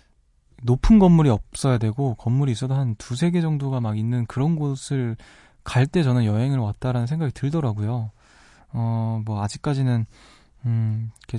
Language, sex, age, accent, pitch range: Korean, male, 20-39, native, 110-140 Hz